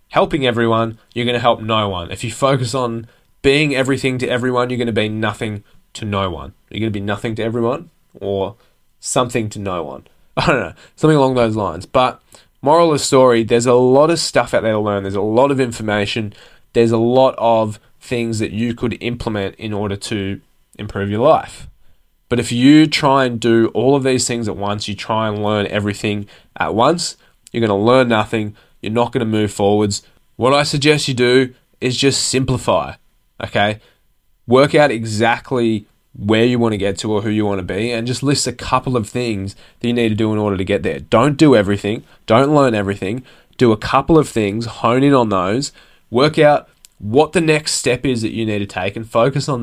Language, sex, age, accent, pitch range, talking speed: English, male, 10-29, Australian, 105-130 Hz, 215 wpm